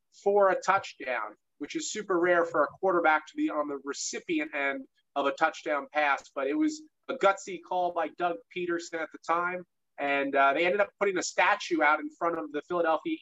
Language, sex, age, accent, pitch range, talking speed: English, male, 30-49, American, 165-195 Hz, 210 wpm